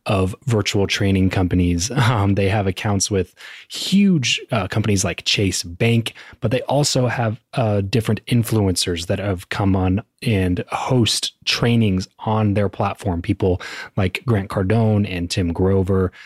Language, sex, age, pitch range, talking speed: English, male, 20-39, 95-115 Hz, 145 wpm